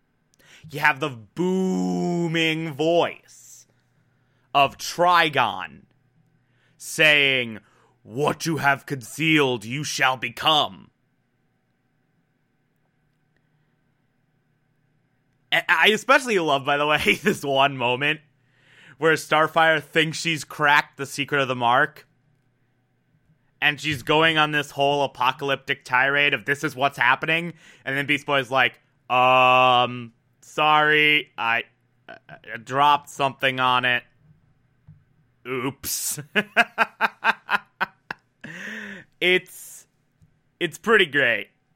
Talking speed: 95 wpm